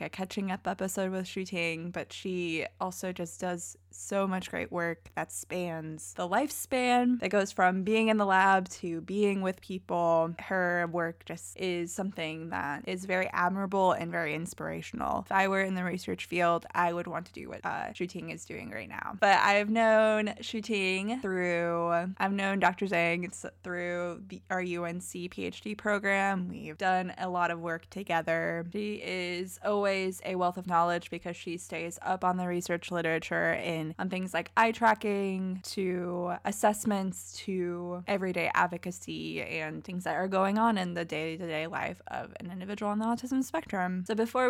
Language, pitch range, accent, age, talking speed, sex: English, 170-200 Hz, American, 20-39, 175 wpm, female